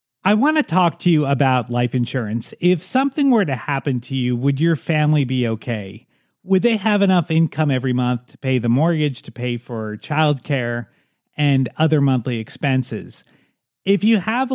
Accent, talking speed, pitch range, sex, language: American, 175 wpm, 125-170 Hz, male, English